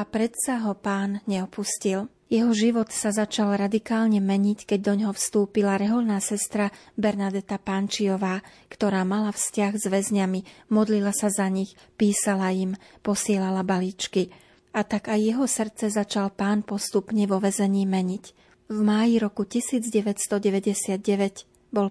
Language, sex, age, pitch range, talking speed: Slovak, female, 40-59, 195-215 Hz, 130 wpm